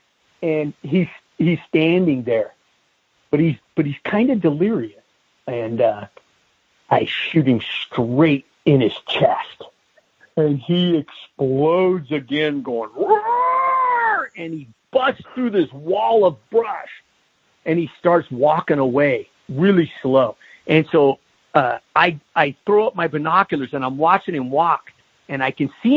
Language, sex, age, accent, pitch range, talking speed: English, male, 50-69, American, 135-180 Hz, 135 wpm